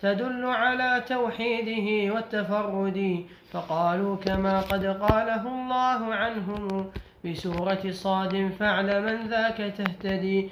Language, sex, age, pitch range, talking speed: Arabic, male, 20-39, 195-230 Hz, 90 wpm